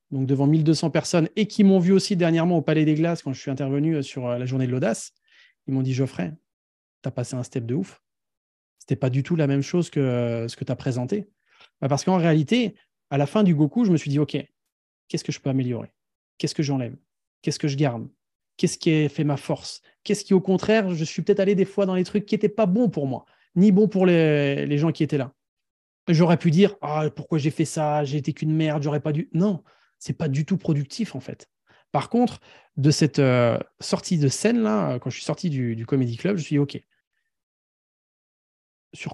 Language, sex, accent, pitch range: French, male, French, 135-170 Hz